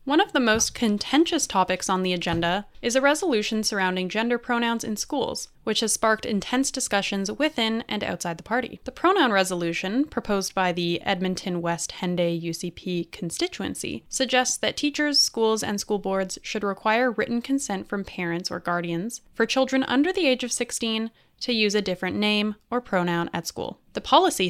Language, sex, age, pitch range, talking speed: English, female, 10-29, 185-245 Hz, 175 wpm